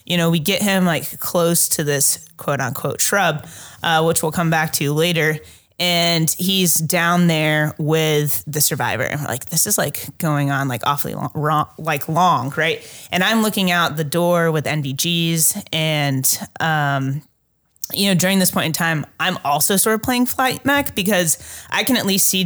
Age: 20-39